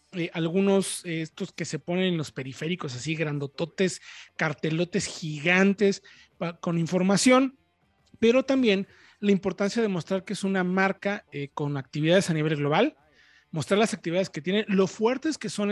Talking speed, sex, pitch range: 160 wpm, male, 165-210 Hz